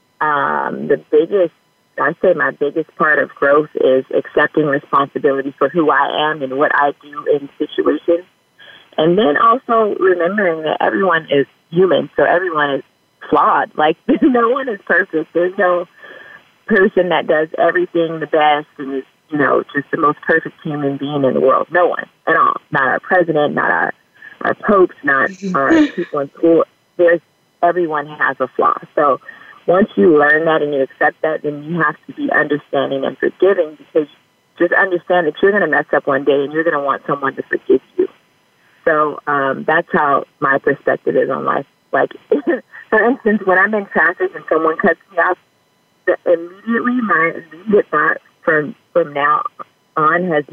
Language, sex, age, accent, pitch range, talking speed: English, female, 30-49, American, 150-220 Hz, 175 wpm